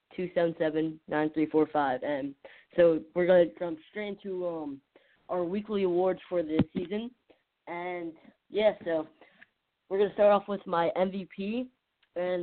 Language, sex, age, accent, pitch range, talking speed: English, female, 20-39, American, 165-190 Hz, 165 wpm